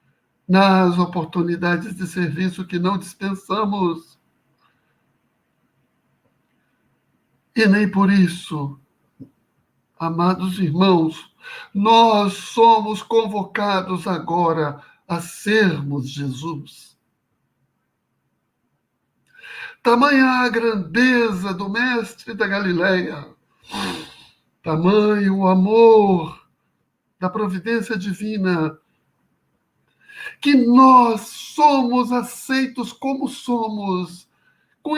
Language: Portuguese